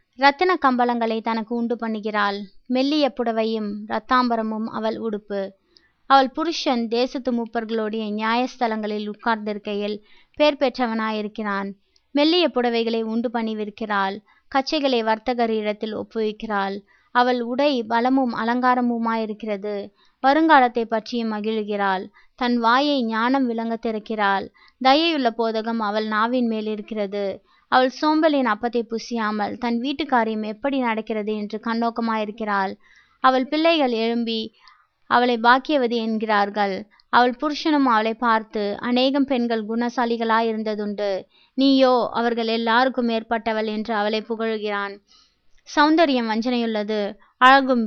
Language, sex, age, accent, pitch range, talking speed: Tamil, female, 20-39, native, 215-250 Hz, 95 wpm